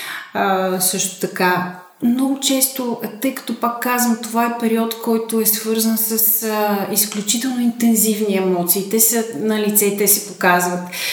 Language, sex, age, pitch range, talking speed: Bulgarian, female, 30-49, 190-225 Hz, 145 wpm